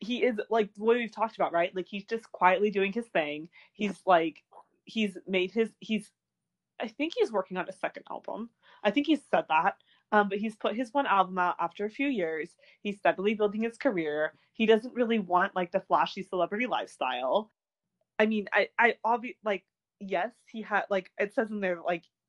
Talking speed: 200 wpm